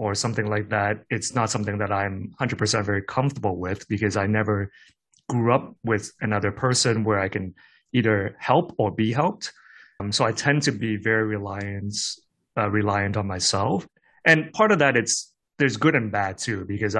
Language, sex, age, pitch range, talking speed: English, male, 20-39, 105-140 Hz, 185 wpm